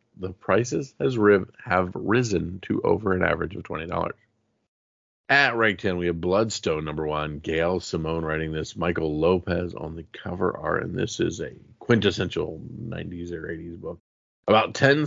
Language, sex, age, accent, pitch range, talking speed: English, male, 40-59, American, 85-110 Hz, 155 wpm